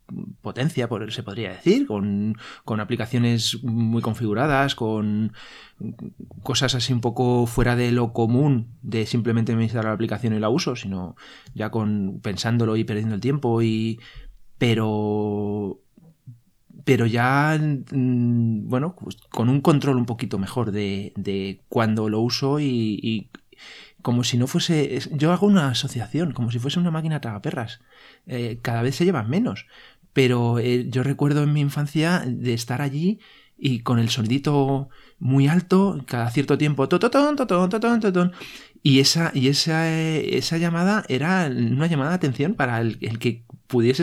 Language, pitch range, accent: Spanish, 115-150 Hz, Spanish